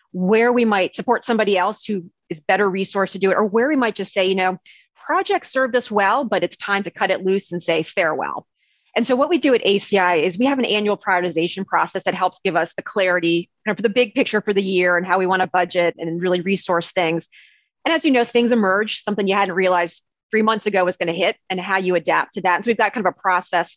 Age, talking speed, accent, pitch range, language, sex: 30-49, 260 wpm, American, 175-215 Hz, English, female